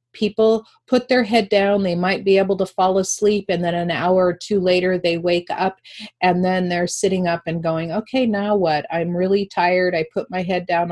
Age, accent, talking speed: 40-59, American, 220 wpm